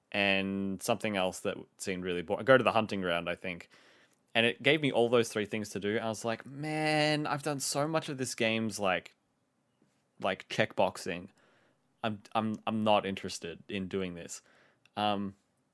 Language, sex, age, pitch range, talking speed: English, male, 20-39, 100-135 Hz, 180 wpm